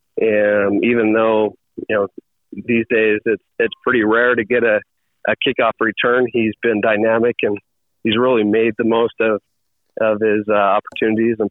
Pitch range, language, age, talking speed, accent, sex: 105-120 Hz, English, 30-49, 165 wpm, American, male